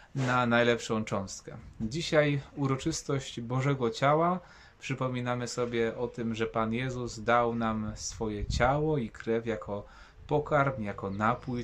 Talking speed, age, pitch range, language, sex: 125 wpm, 20-39, 115-140 Hz, Polish, male